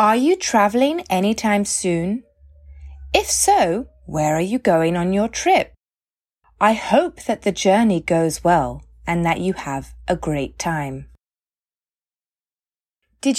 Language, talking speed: English, 130 wpm